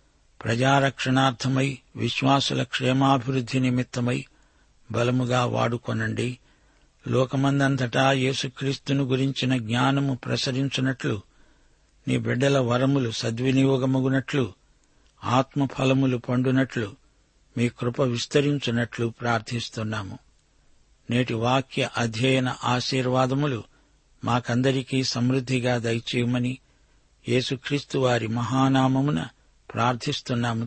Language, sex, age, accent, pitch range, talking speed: Telugu, male, 50-69, native, 120-135 Hz, 65 wpm